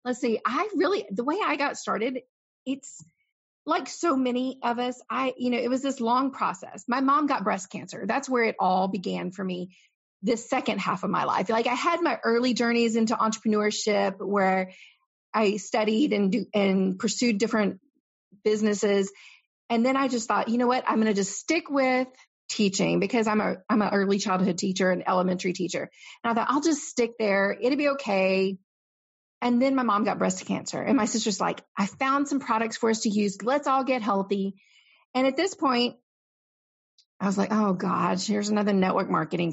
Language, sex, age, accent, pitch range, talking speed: English, female, 30-49, American, 200-255 Hz, 195 wpm